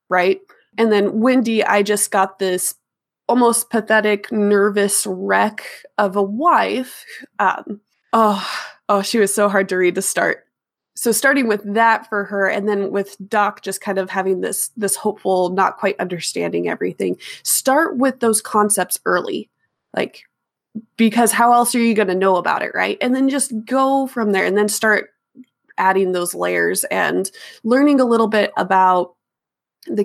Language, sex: English, female